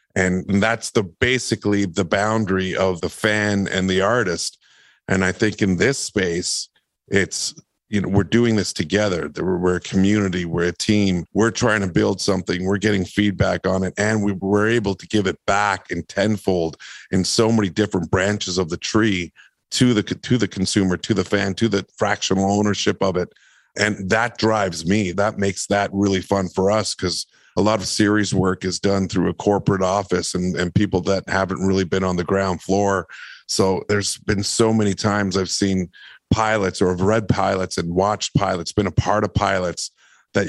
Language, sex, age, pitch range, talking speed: English, male, 50-69, 95-105 Hz, 190 wpm